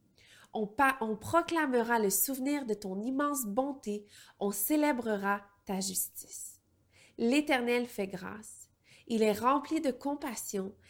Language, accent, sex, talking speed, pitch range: French, Canadian, female, 120 wpm, 200-260 Hz